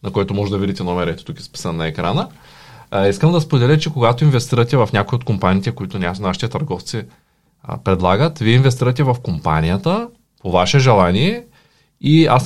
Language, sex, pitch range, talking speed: Bulgarian, male, 100-140 Hz, 165 wpm